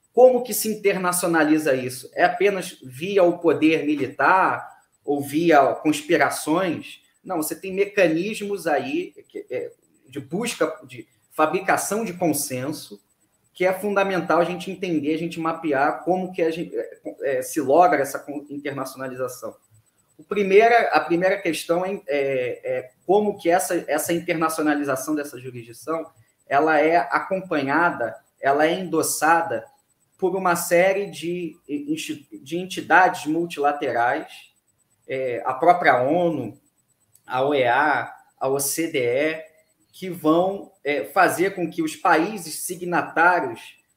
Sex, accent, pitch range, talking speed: male, Brazilian, 145-190 Hz, 115 wpm